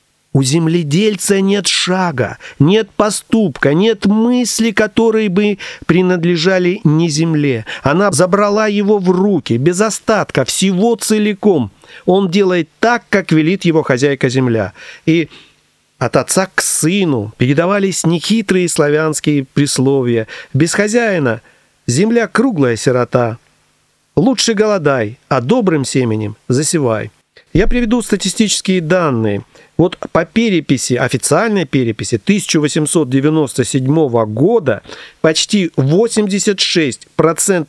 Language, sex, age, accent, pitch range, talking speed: Russian, male, 40-59, native, 140-200 Hz, 95 wpm